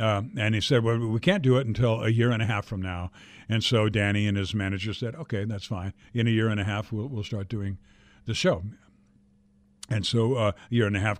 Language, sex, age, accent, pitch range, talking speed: English, male, 60-79, American, 110-145 Hz, 250 wpm